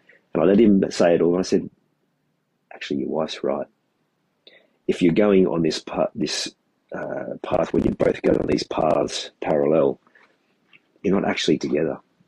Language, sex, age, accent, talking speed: English, male, 30-49, Australian, 160 wpm